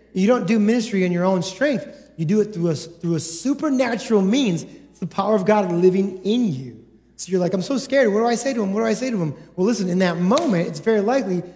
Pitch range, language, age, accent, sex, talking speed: 170-225 Hz, English, 30-49, American, male, 265 wpm